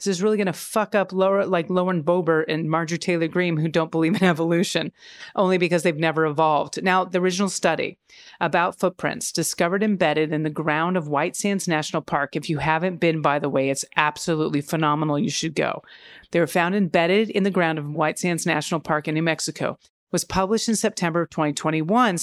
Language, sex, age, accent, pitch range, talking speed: English, female, 40-59, American, 160-205 Hz, 210 wpm